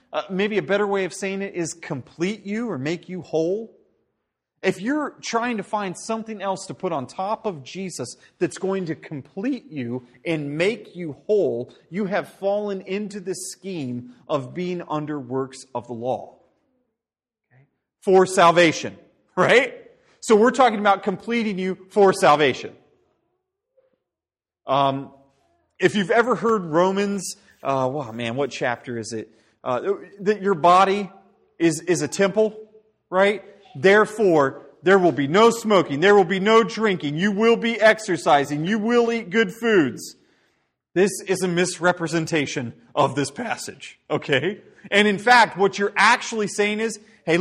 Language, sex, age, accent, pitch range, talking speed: English, male, 30-49, American, 165-220 Hz, 150 wpm